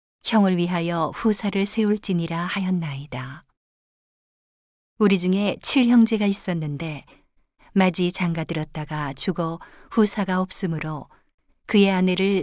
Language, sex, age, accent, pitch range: Korean, female, 50-69, native, 165-200 Hz